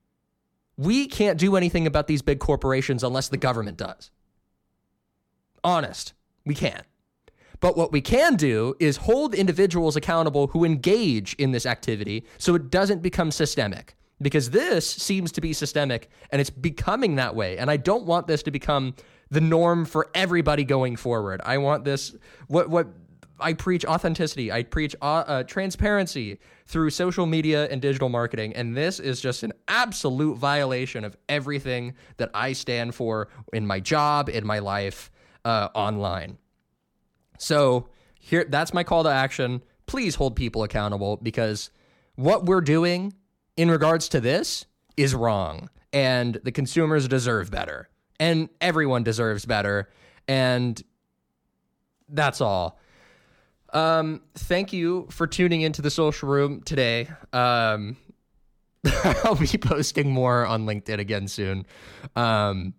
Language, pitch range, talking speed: English, 115-160 Hz, 145 wpm